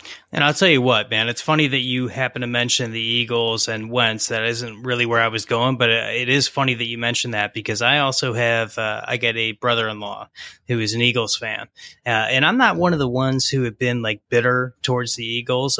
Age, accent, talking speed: 20-39, American, 240 wpm